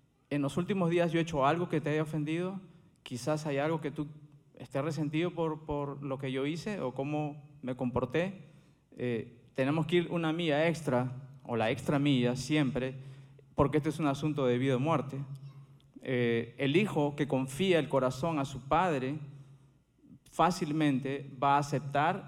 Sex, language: male, Spanish